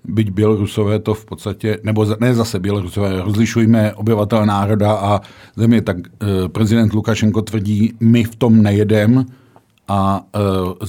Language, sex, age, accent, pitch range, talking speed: Czech, male, 50-69, native, 105-130 Hz, 140 wpm